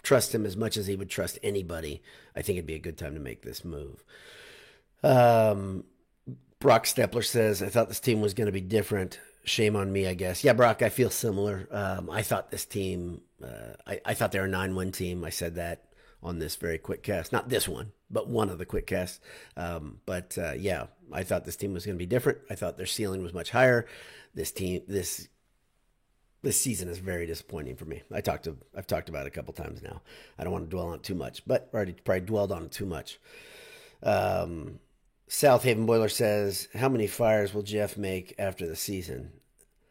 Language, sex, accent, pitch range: English, male, American, 90-115 Hz